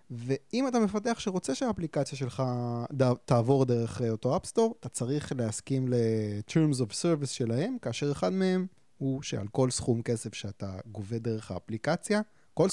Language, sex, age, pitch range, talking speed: Hebrew, male, 20-39, 115-155 Hz, 145 wpm